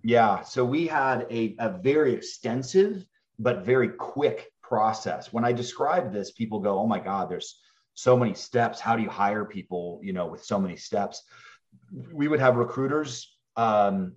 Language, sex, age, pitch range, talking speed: English, male, 30-49, 110-145 Hz, 175 wpm